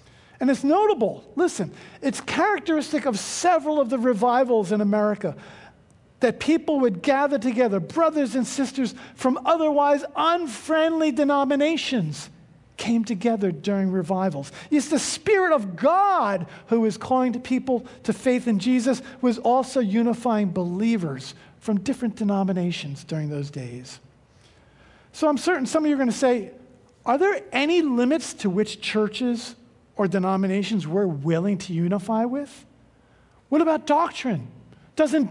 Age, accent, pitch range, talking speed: 50-69, American, 195-280 Hz, 140 wpm